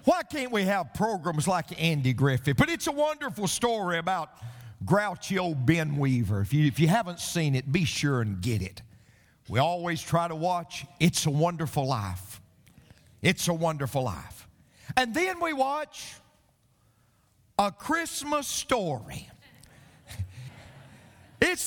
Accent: American